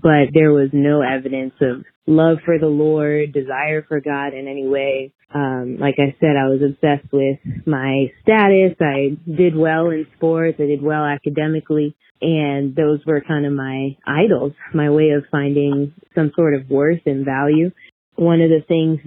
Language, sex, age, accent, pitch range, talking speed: English, female, 20-39, American, 140-160 Hz, 175 wpm